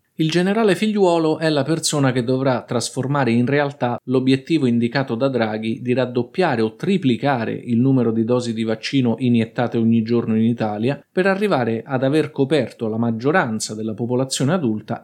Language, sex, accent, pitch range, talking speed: Italian, male, native, 115-155 Hz, 160 wpm